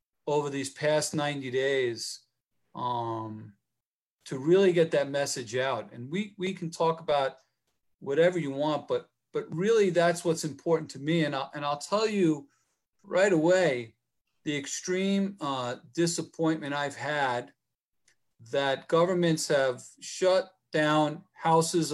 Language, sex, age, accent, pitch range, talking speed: English, male, 40-59, American, 135-170 Hz, 135 wpm